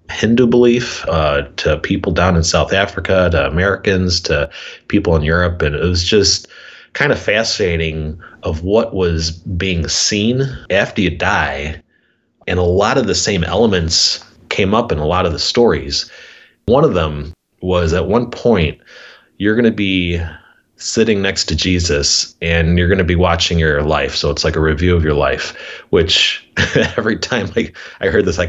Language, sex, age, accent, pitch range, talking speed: English, male, 30-49, American, 80-95 Hz, 175 wpm